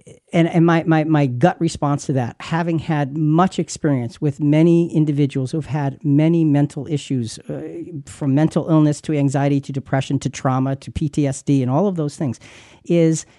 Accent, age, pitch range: American, 50-69, 130-165 Hz